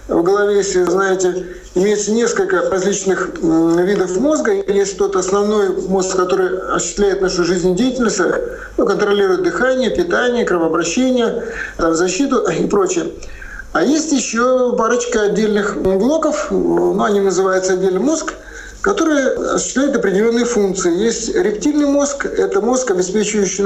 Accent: native